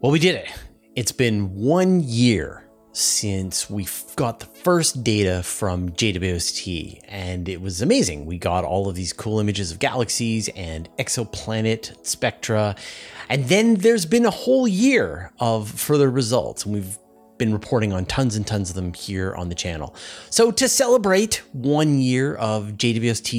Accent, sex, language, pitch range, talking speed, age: American, male, English, 100-145 Hz, 160 wpm, 30-49